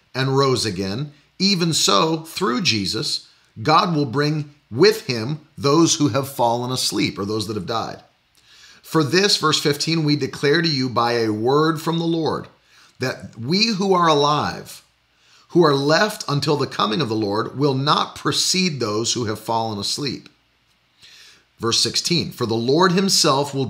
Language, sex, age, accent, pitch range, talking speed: English, male, 40-59, American, 120-160 Hz, 165 wpm